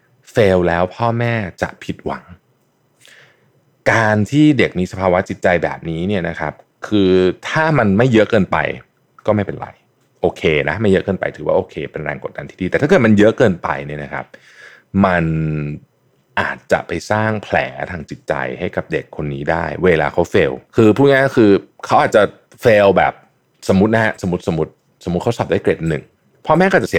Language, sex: Thai, male